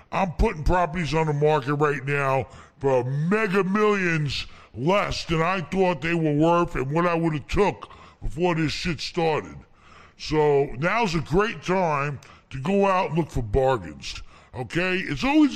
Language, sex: English, female